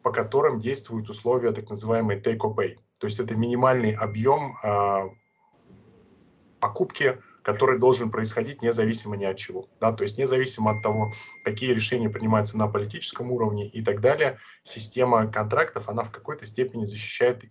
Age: 20-39